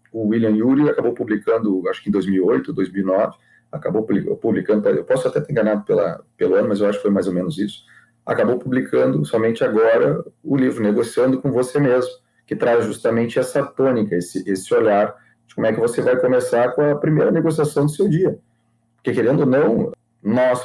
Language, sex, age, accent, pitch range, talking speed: Portuguese, male, 40-59, Brazilian, 110-145 Hz, 190 wpm